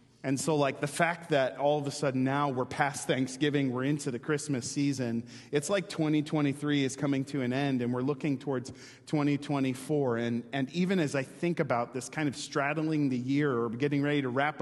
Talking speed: 205 wpm